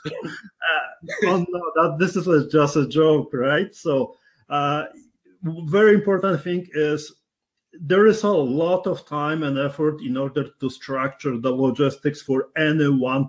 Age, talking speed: 40-59, 150 wpm